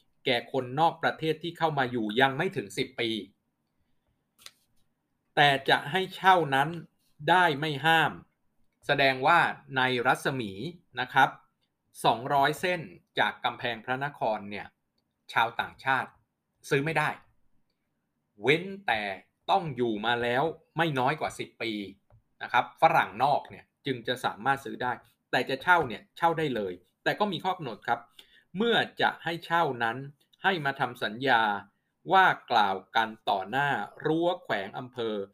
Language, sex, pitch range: Thai, male, 120-165 Hz